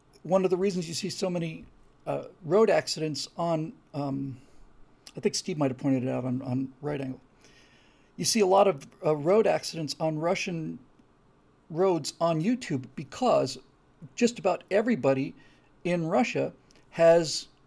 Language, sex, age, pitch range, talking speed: English, male, 40-59, 145-210 Hz, 155 wpm